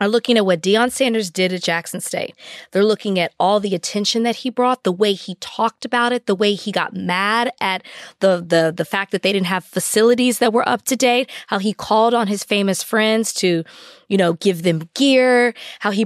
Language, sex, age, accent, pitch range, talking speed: English, female, 20-39, American, 185-235 Hz, 225 wpm